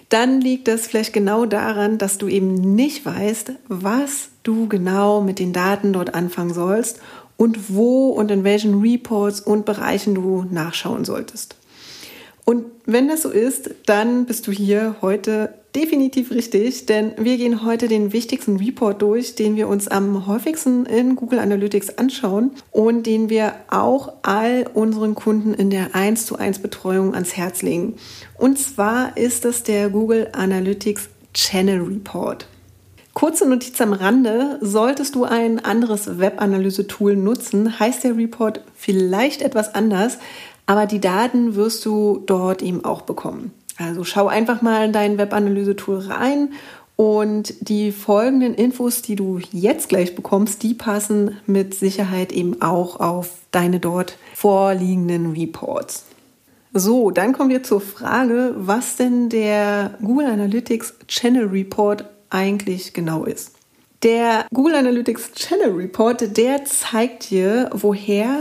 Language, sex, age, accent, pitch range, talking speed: German, female, 40-59, German, 200-235 Hz, 140 wpm